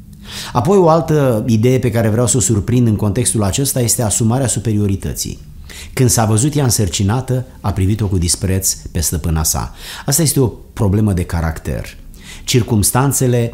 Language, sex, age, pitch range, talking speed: Romanian, male, 30-49, 95-125 Hz, 155 wpm